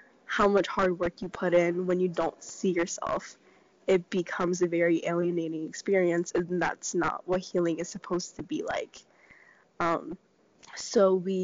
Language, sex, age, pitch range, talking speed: English, female, 10-29, 175-195 Hz, 165 wpm